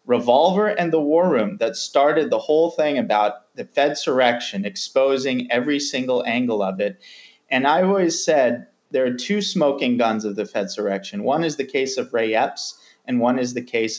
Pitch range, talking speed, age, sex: 120-165 Hz, 195 wpm, 30-49, male